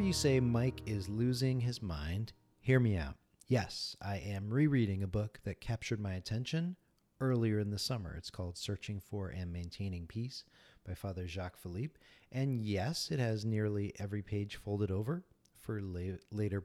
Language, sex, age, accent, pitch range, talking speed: English, male, 40-59, American, 95-120 Hz, 165 wpm